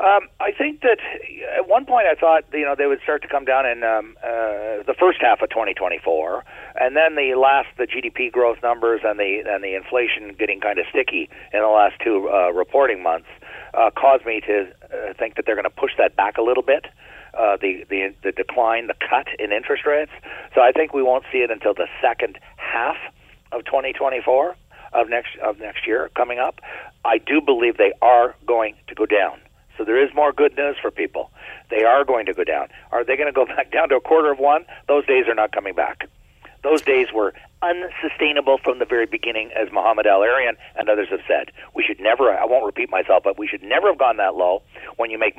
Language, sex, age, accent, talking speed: English, male, 50-69, American, 225 wpm